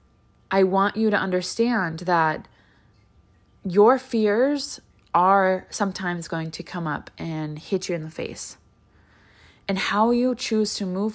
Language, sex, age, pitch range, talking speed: English, female, 20-39, 165-200 Hz, 140 wpm